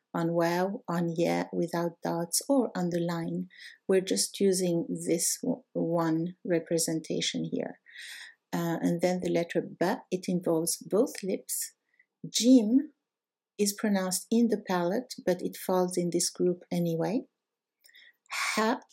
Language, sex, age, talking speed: Arabic, female, 60-79, 130 wpm